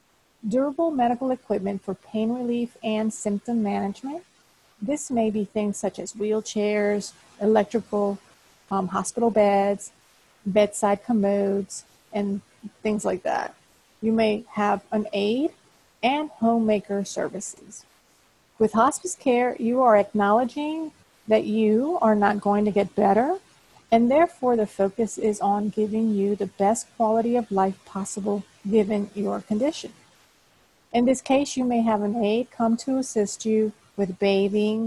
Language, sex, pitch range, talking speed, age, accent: English, female, 200-235 Hz, 135 wpm, 40-59, American